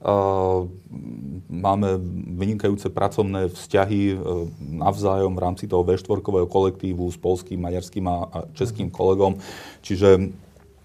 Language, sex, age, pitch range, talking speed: Slovak, male, 30-49, 90-100 Hz, 105 wpm